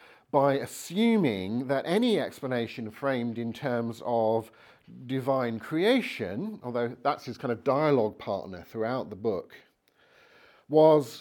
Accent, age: British, 50-69